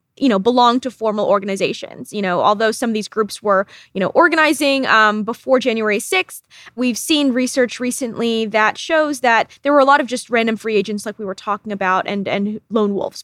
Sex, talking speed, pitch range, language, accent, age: female, 210 wpm, 205-245 Hz, English, American, 20-39